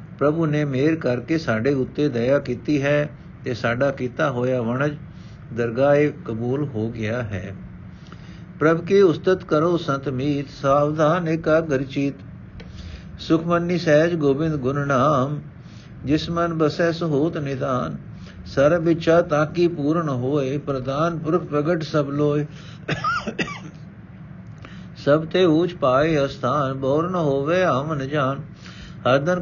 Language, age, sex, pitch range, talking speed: Punjabi, 60-79, male, 130-155 Hz, 120 wpm